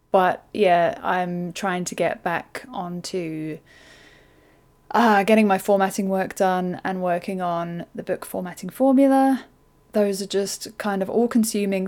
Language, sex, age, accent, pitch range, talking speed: English, female, 20-39, British, 180-210 Hz, 140 wpm